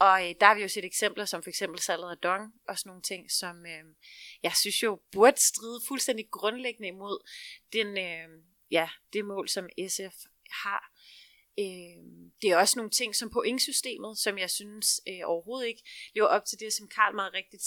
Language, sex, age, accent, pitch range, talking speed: Danish, female, 30-49, native, 190-230 Hz, 195 wpm